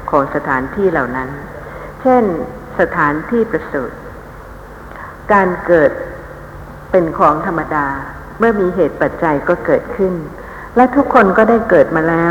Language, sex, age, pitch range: Thai, female, 60-79, 155-200 Hz